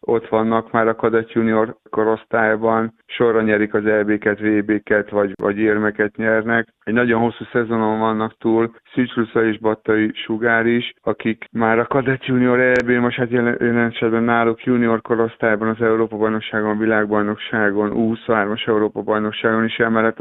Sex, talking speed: male, 150 wpm